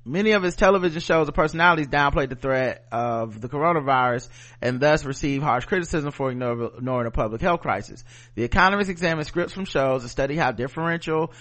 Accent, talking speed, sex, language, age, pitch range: American, 180 wpm, male, English, 30-49, 125-155 Hz